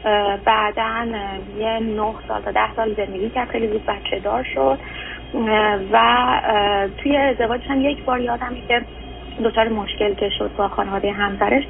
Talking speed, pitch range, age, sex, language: 140 wpm, 205-245 Hz, 30-49, female, Persian